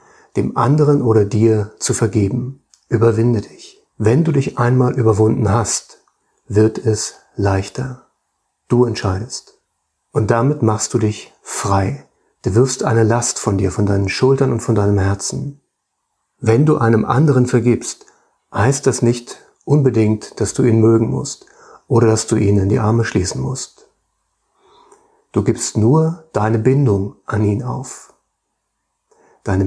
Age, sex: 40-59, male